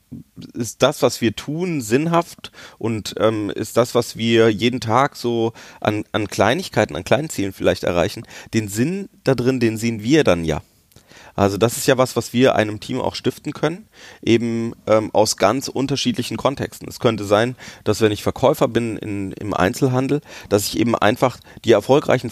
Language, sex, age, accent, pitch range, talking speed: German, male, 30-49, German, 105-125 Hz, 180 wpm